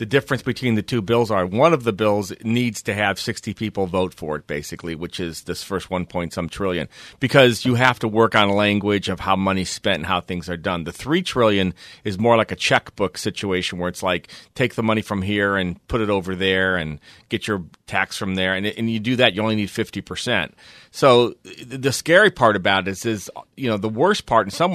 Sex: male